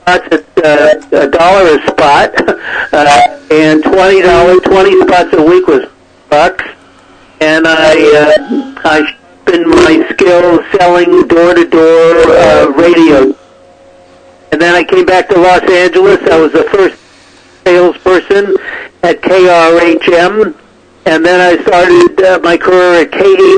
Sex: male